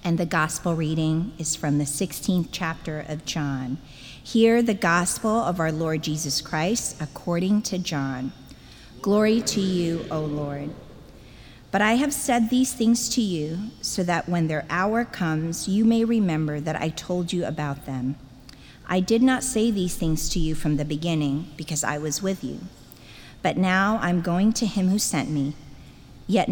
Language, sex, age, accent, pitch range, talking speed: English, female, 40-59, American, 150-200 Hz, 170 wpm